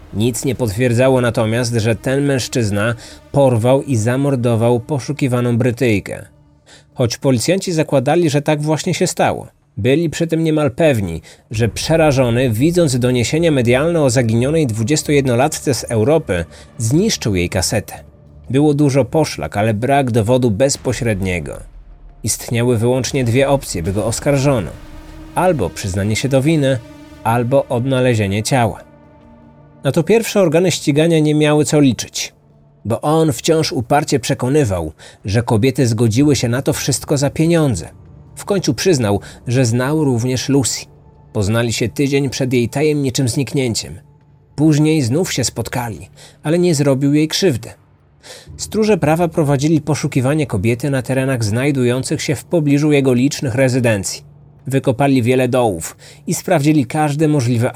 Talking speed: 130 wpm